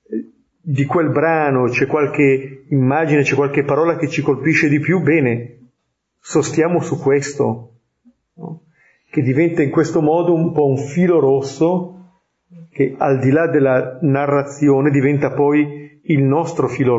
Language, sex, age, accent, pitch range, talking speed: Italian, male, 40-59, native, 125-150 Hz, 140 wpm